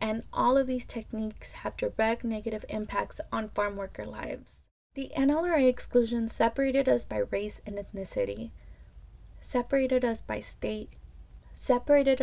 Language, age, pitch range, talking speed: English, 20-39, 220-275 Hz, 135 wpm